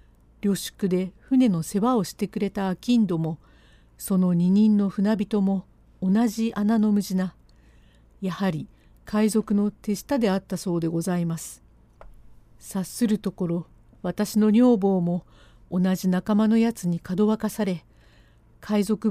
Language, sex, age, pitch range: Japanese, female, 50-69, 180-220 Hz